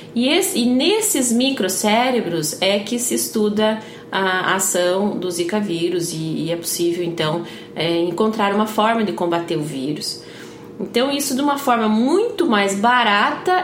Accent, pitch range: Brazilian, 185-265 Hz